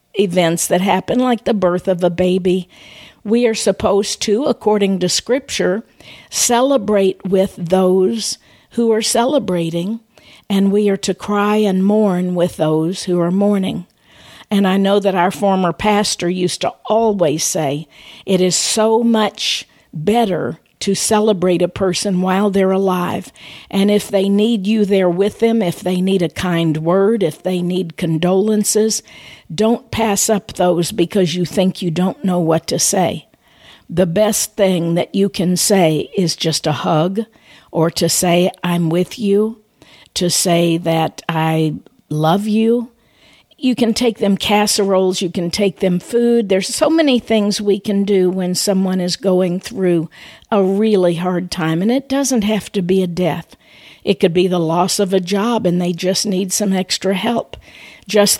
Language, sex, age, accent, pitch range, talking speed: English, female, 50-69, American, 180-210 Hz, 165 wpm